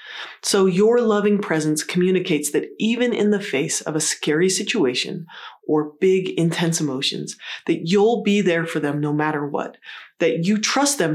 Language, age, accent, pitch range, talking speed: English, 30-49, American, 160-235 Hz, 165 wpm